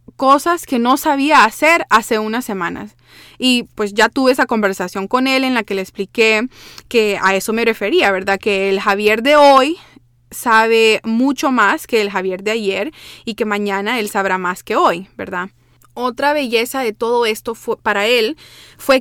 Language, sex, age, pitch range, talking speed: English, female, 20-39, 210-260 Hz, 185 wpm